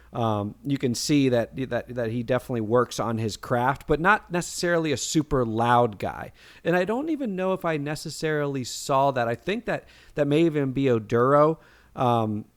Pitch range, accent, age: 120-150 Hz, American, 40-59